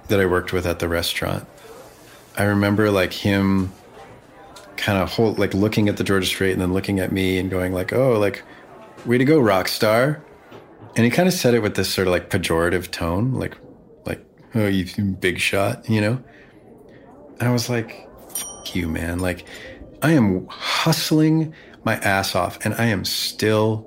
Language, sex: English, male